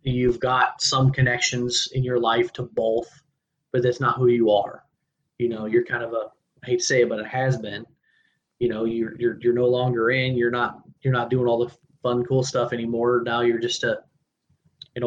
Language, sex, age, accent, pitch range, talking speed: English, male, 20-39, American, 120-135 Hz, 215 wpm